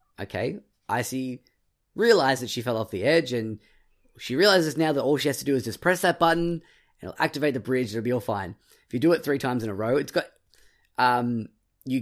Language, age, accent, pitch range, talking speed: English, 10-29, Australian, 105-135 Hz, 235 wpm